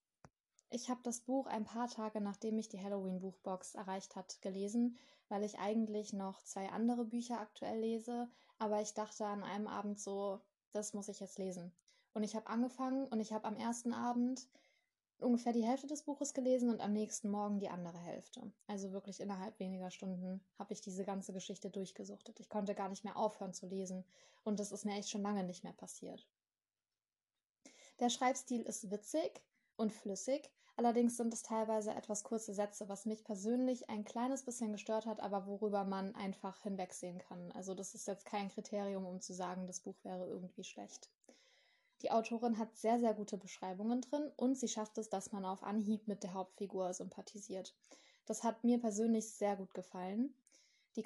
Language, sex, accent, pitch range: German, female, German, 195-235 Hz